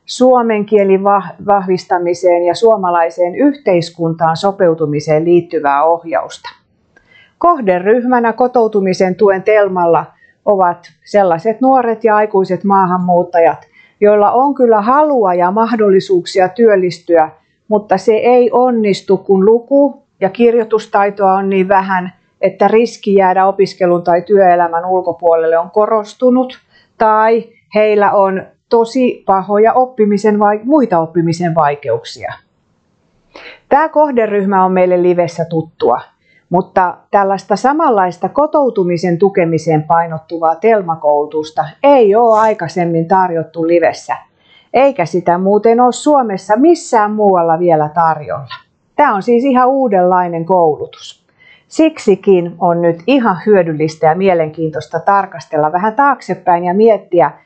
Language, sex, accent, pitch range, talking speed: Finnish, female, native, 175-225 Hz, 105 wpm